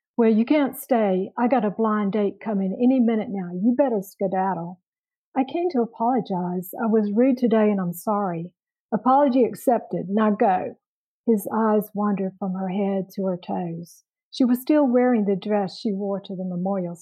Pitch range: 190-230 Hz